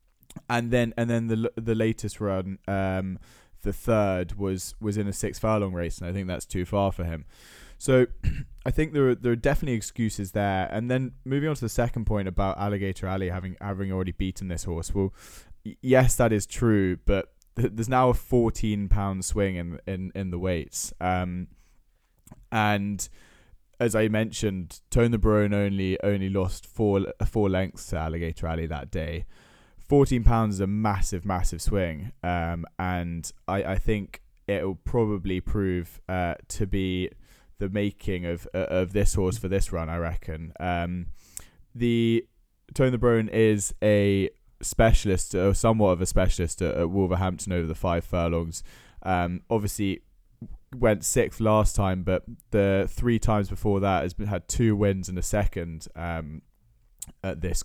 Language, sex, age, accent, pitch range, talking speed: English, male, 20-39, British, 90-110 Hz, 170 wpm